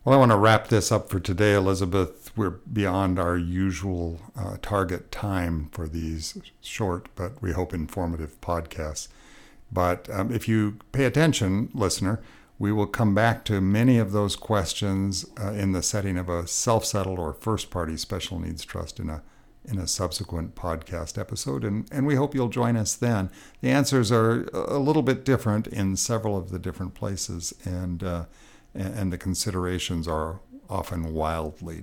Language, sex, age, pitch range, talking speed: English, male, 60-79, 90-110 Hz, 170 wpm